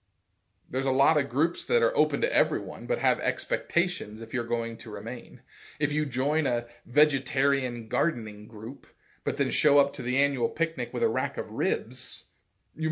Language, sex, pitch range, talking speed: English, male, 110-155 Hz, 180 wpm